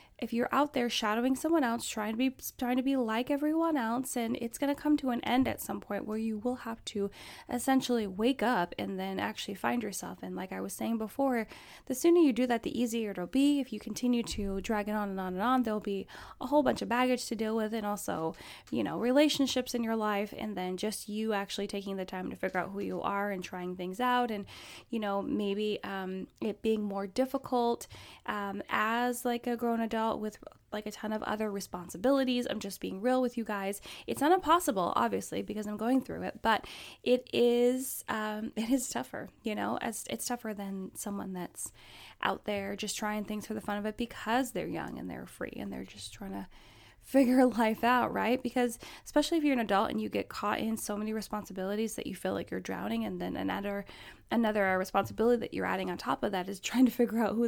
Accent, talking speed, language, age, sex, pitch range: American, 230 wpm, English, 10-29, female, 200-245 Hz